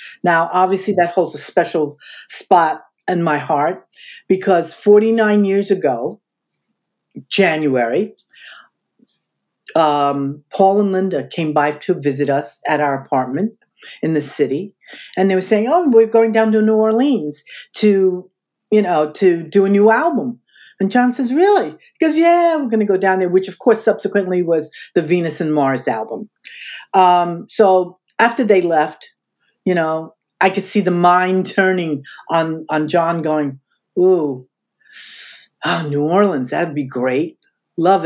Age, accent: 50-69, American